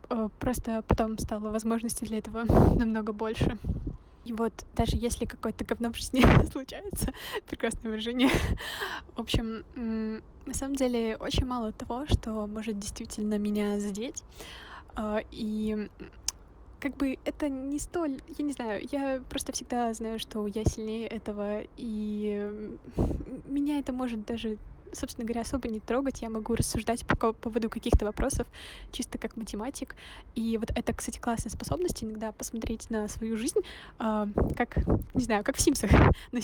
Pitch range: 220-255 Hz